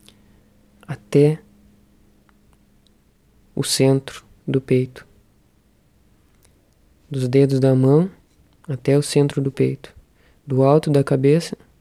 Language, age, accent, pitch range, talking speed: Portuguese, 20-39, Brazilian, 130-145 Hz, 90 wpm